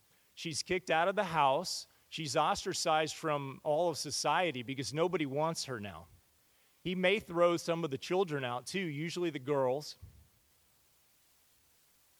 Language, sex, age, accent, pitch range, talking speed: English, male, 30-49, American, 130-170 Hz, 150 wpm